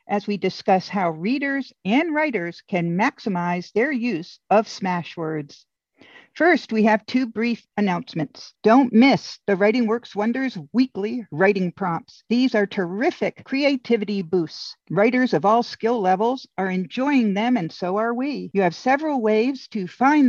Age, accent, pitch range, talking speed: 50-69, American, 195-245 Hz, 150 wpm